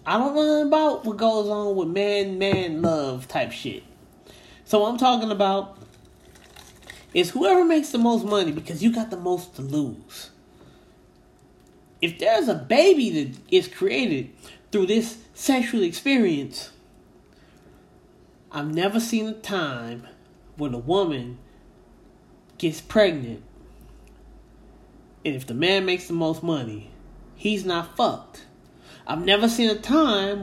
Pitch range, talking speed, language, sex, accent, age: 165-240 Hz, 135 wpm, English, male, American, 20-39